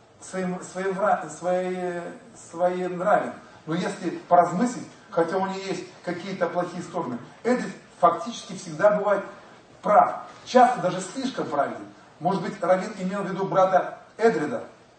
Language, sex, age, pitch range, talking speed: Russian, male, 40-59, 170-205 Hz, 130 wpm